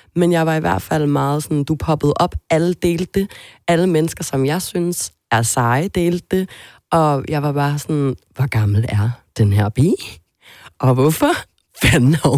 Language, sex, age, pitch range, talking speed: Danish, female, 30-49, 125-160 Hz, 175 wpm